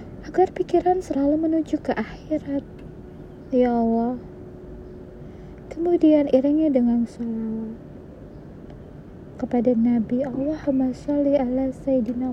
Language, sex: Indonesian, female